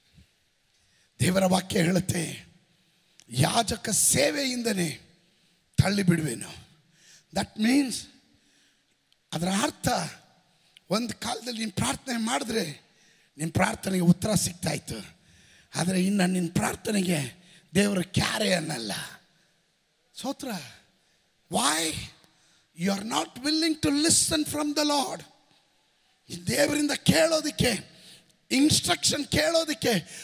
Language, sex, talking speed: Kannada, male, 85 wpm